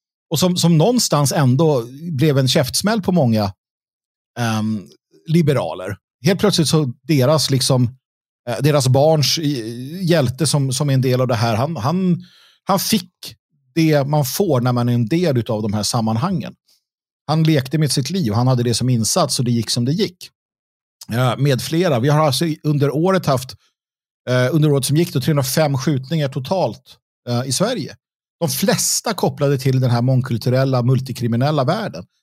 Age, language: 50-69, Swedish